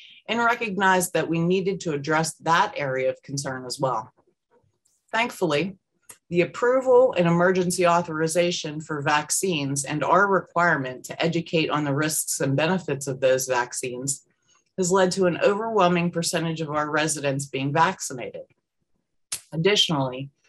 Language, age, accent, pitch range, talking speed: English, 30-49, American, 150-190 Hz, 135 wpm